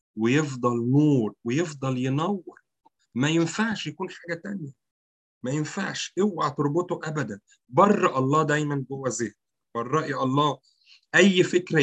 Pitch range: 125-170 Hz